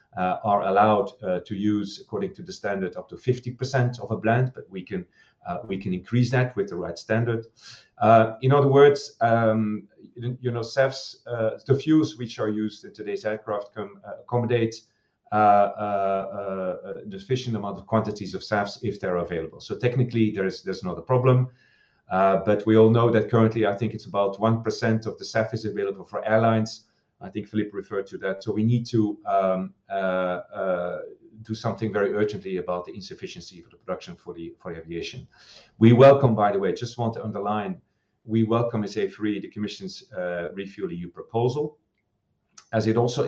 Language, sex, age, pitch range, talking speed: English, male, 40-59, 100-120 Hz, 185 wpm